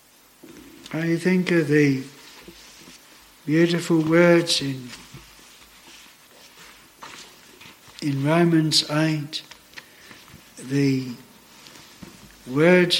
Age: 60-79